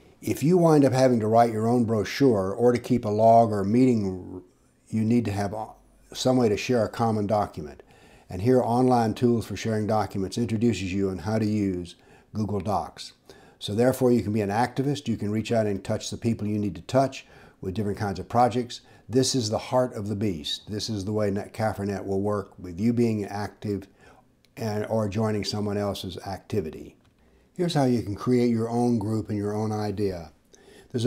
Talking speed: 205 wpm